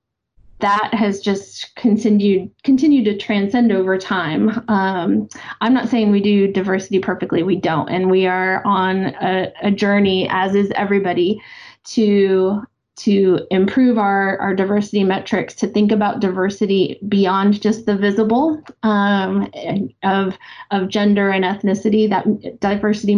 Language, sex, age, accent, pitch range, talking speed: English, female, 20-39, American, 190-220 Hz, 135 wpm